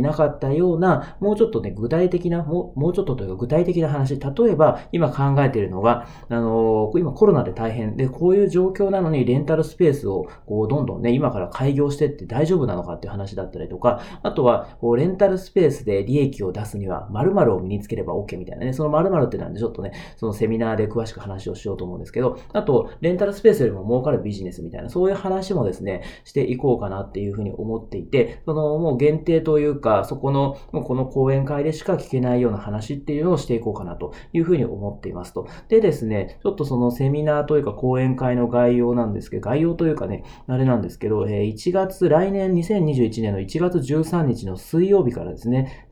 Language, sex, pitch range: Japanese, male, 110-165 Hz